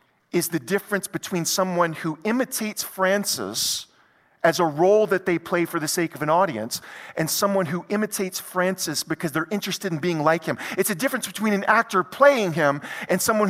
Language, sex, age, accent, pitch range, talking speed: English, male, 40-59, American, 175-230 Hz, 185 wpm